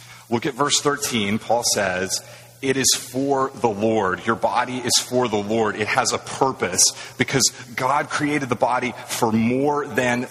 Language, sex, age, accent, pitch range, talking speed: English, male, 30-49, American, 115-140 Hz, 170 wpm